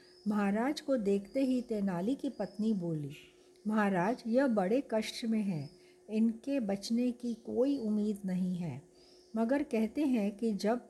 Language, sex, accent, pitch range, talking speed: Hindi, female, native, 195-255 Hz, 145 wpm